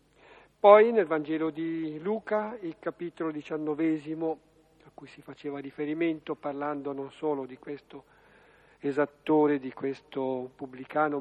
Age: 50-69